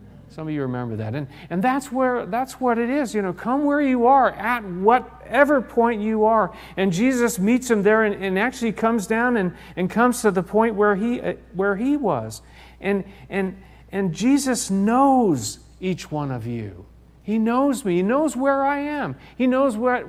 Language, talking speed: English, 195 wpm